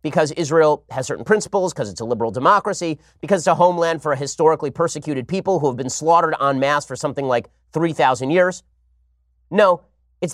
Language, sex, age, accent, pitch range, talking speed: English, male, 30-49, American, 135-185 Hz, 185 wpm